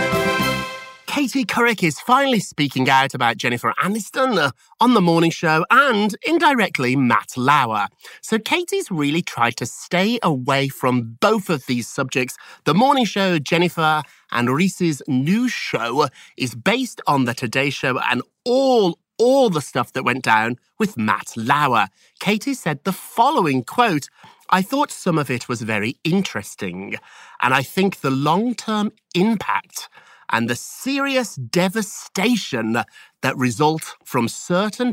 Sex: male